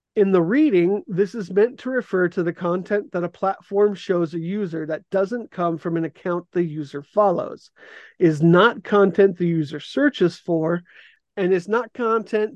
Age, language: 40-59, English